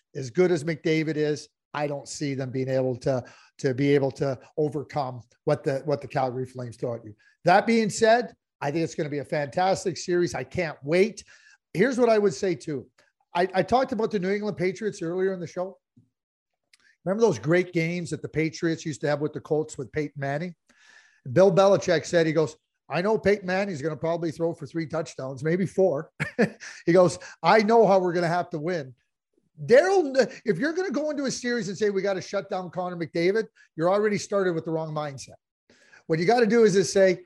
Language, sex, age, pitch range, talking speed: English, male, 40-59, 150-195 Hz, 220 wpm